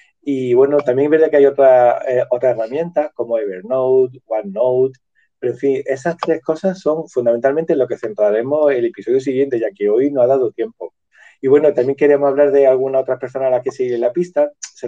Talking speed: 215 wpm